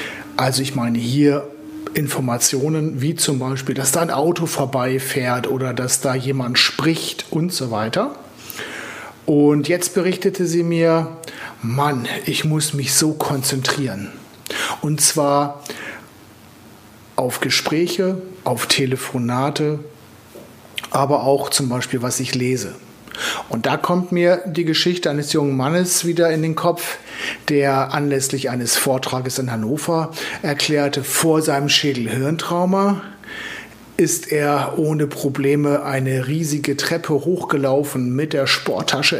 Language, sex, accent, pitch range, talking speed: German, male, German, 130-160 Hz, 120 wpm